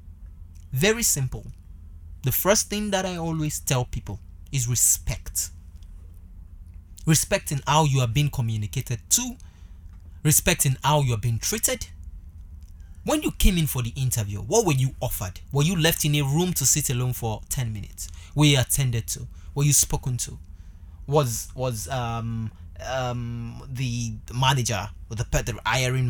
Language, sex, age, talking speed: English, male, 20-39, 145 wpm